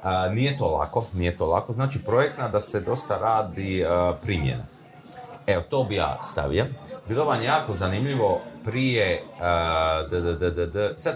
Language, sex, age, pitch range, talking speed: Croatian, male, 30-49, 90-130 Hz, 130 wpm